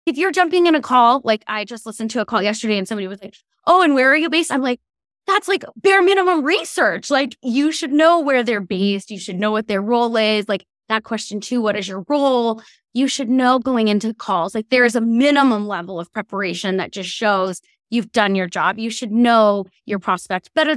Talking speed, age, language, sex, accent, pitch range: 230 wpm, 20-39, English, female, American, 215-295 Hz